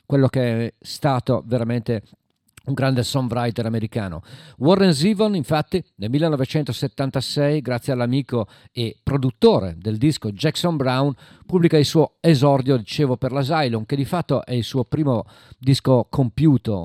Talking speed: 140 wpm